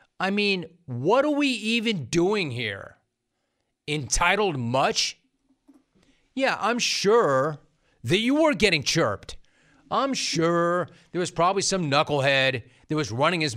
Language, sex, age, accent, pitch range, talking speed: English, male, 30-49, American, 140-185 Hz, 130 wpm